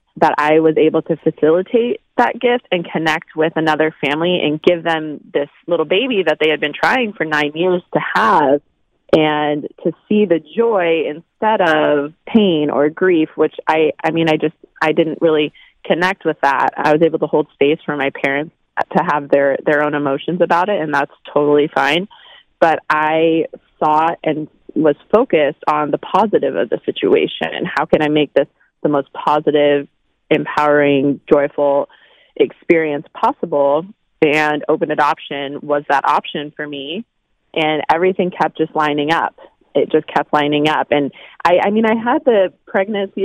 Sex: female